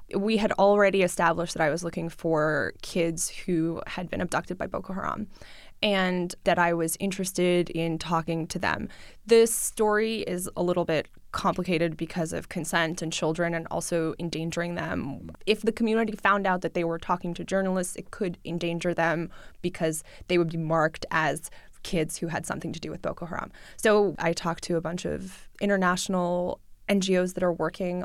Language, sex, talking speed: English, female, 180 wpm